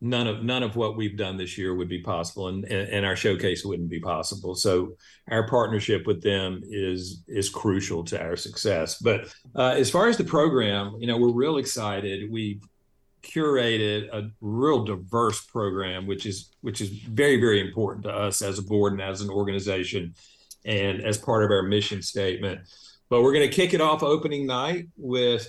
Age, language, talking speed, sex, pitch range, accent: 50-69, English, 195 wpm, male, 100-120 Hz, American